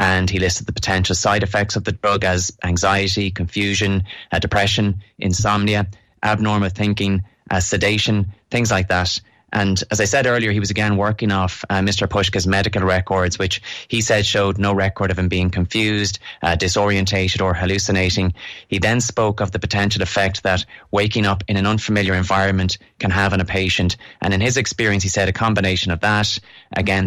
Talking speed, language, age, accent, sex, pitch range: 180 wpm, English, 20-39, Irish, male, 95-105 Hz